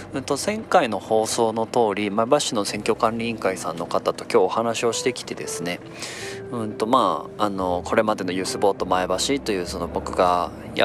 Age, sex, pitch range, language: 20-39, male, 95-130 Hz, Japanese